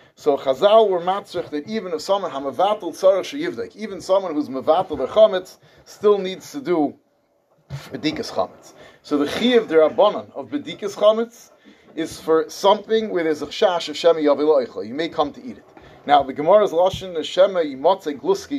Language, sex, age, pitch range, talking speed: English, male, 30-49, 150-205 Hz, 160 wpm